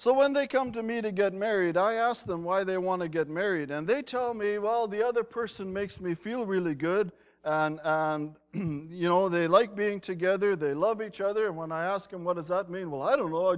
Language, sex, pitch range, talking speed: English, male, 160-225 Hz, 250 wpm